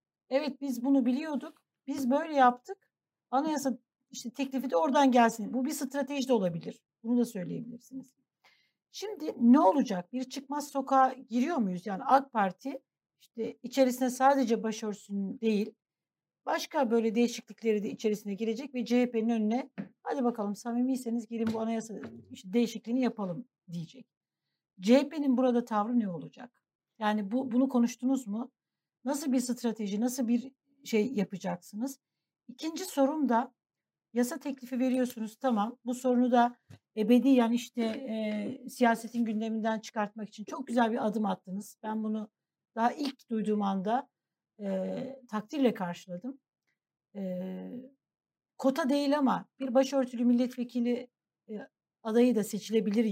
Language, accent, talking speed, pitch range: Turkish, native, 130 wpm, 220-260 Hz